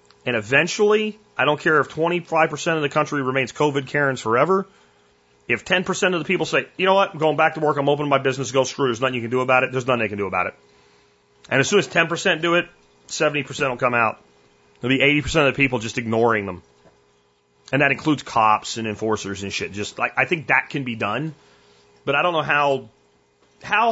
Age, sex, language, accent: 30-49, male, English, American